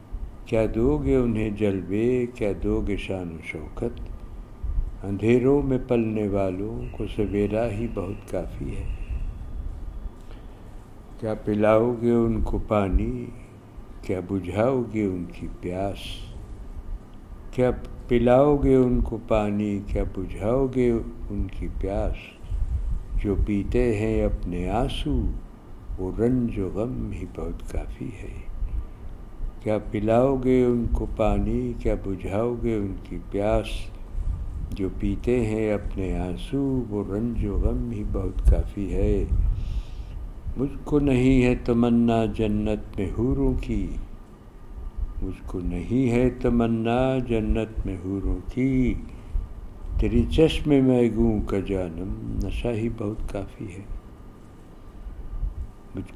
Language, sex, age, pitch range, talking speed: Urdu, male, 60-79, 95-115 Hz, 120 wpm